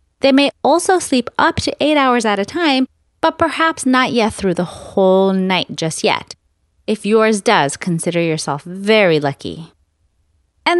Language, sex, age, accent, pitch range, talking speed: English, female, 30-49, American, 175-270 Hz, 160 wpm